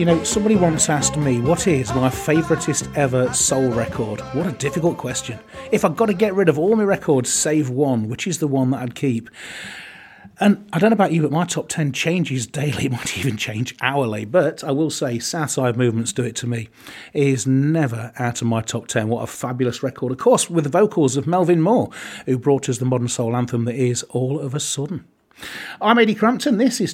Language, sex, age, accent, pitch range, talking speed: English, male, 30-49, British, 130-170 Hz, 220 wpm